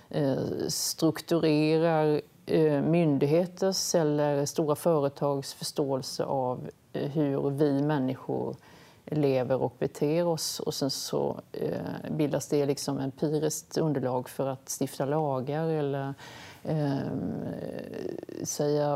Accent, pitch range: native, 140-155 Hz